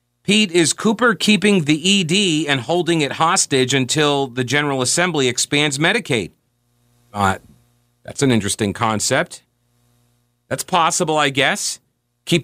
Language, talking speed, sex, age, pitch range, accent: English, 130 wpm, male, 40-59, 120-155 Hz, American